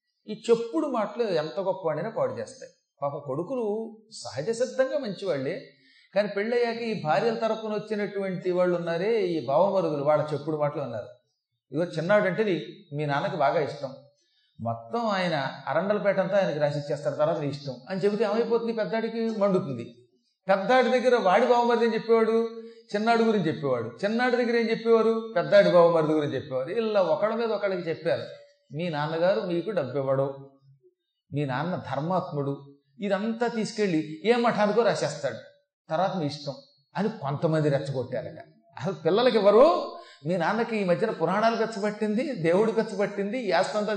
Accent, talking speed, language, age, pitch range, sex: native, 135 wpm, Telugu, 30-49, 145-220 Hz, male